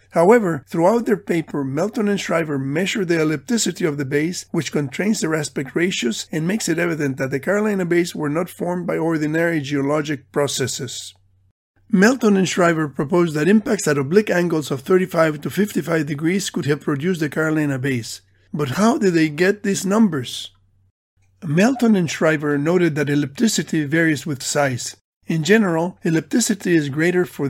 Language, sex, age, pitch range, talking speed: English, male, 50-69, 145-185 Hz, 165 wpm